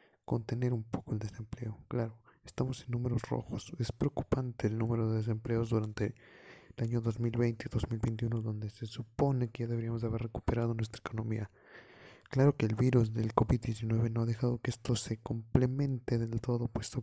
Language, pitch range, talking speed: Spanish, 110-125 Hz, 170 wpm